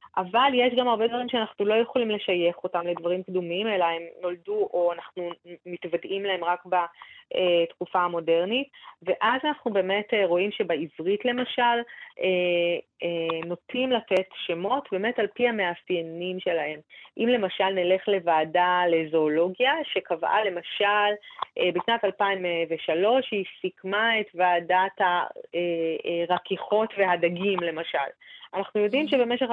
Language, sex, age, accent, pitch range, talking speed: Hebrew, female, 30-49, native, 175-240 Hz, 110 wpm